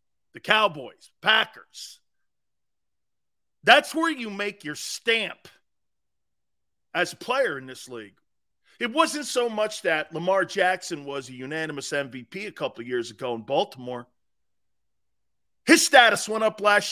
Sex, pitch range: male, 150-230 Hz